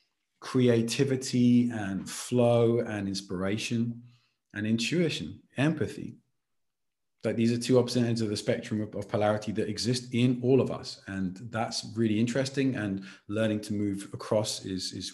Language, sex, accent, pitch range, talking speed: English, male, British, 105-125 Hz, 145 wpm